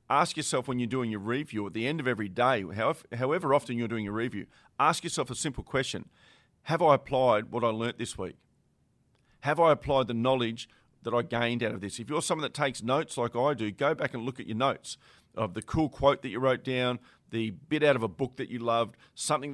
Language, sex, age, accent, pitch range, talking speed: English, male, 40-59, Australian, 115-150 Hz, 235 wpm